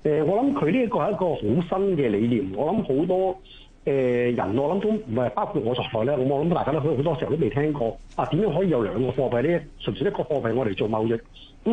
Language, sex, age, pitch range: Chinese, male, 60-79, 115-170 Hz